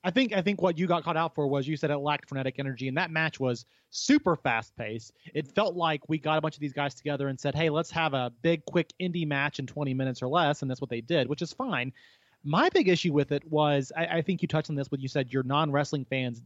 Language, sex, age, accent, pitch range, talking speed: English, male, 30-49, American, 145-200 Hz, 275 wpm